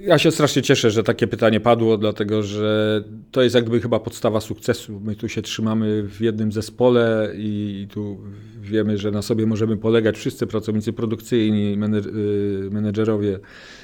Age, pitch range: 40-59, 105-125 Hz